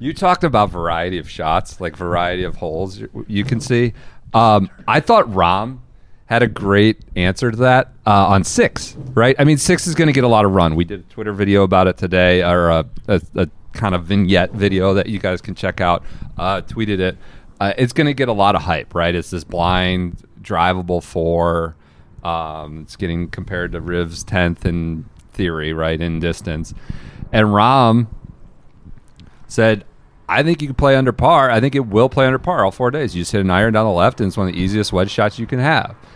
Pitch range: 85-110 Hz